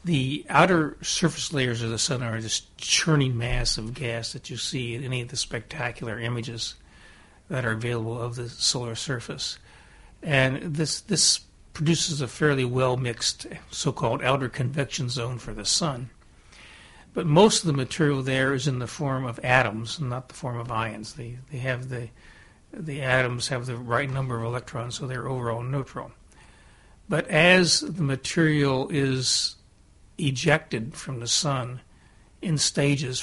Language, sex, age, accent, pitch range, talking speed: English, male, 60-79, American, 120-150 Hz, 160 wpm